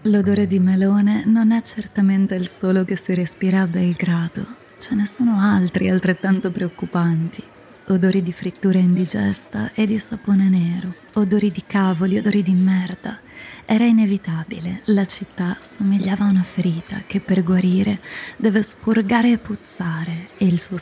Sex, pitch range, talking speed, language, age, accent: female, 180-215 Hz, 145 wpm, Italian, 20-39, native